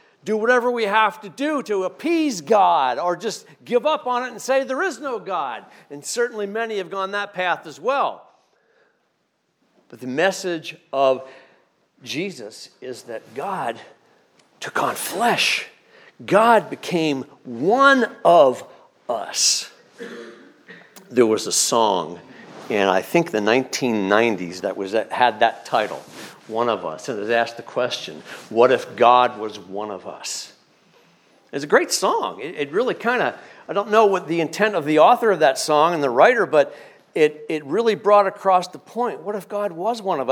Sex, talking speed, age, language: male, 170 wpm, 50-69, English